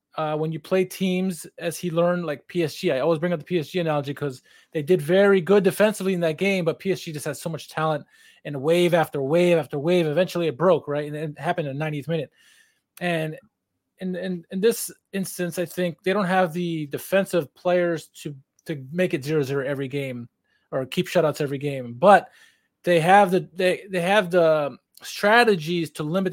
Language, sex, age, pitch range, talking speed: English, male, 20-39, 160-190 Hz, 200 wpm